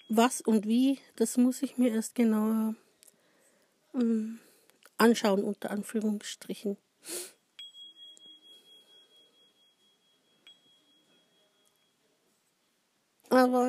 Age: 50-69